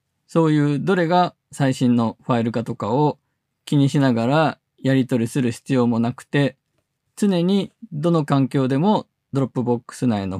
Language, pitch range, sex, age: Japanese, 120-155 Hz, male, 20-39